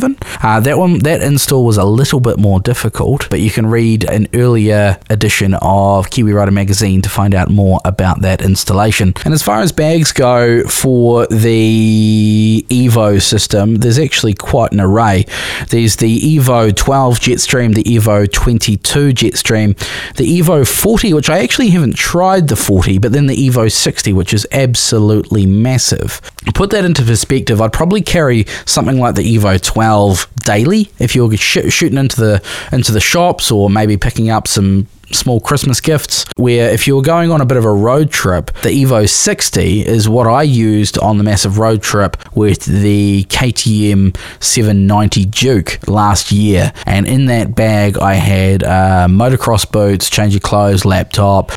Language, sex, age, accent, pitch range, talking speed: English, male, 20-39, Australian, 100-130 Hz, 170 wpm